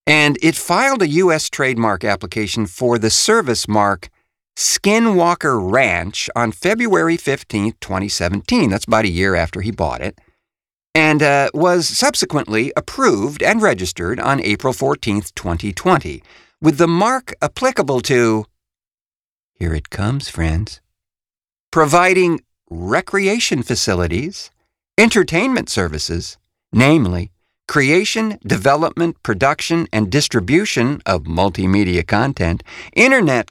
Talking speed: 105 wpm